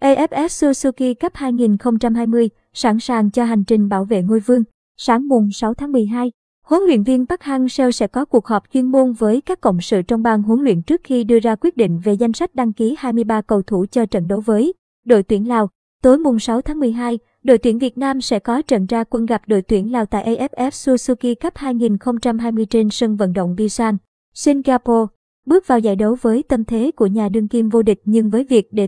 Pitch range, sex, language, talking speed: 220-255 Hz, male, Vietnamese, 215 wpm